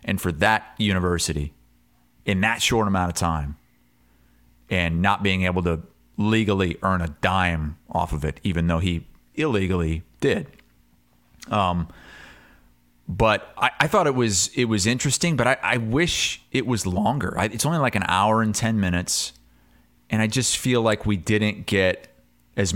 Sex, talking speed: male, 165 wpm